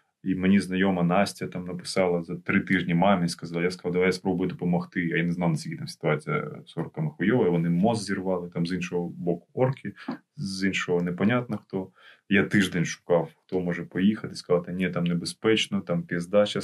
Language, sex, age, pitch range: Ukrainian, male, 20-39, 90-110 Hz